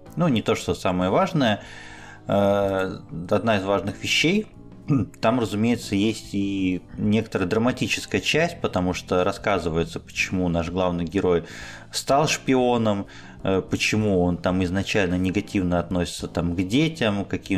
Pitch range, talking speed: 90-110 Hz, 120 wpm